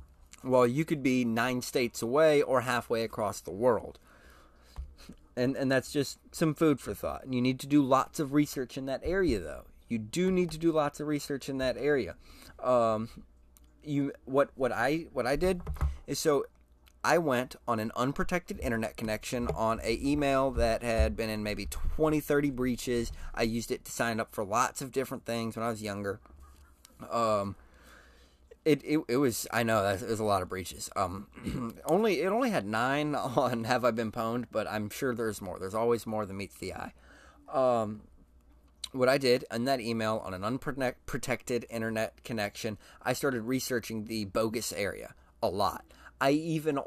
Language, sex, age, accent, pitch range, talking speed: English, male, 30-49, American, 100-140 Hz, 185 wpm